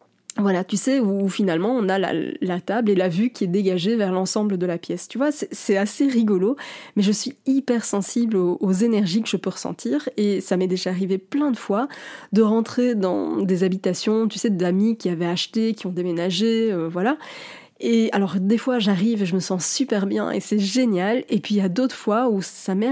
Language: French